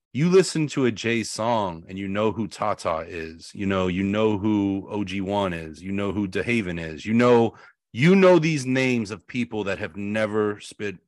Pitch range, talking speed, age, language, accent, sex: 95-120 Hz, 195 wpm, 30-49, English, American, male